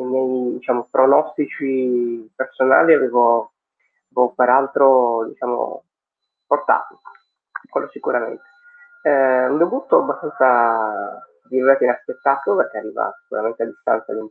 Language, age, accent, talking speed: Italian, 30-49, native, 90 wpm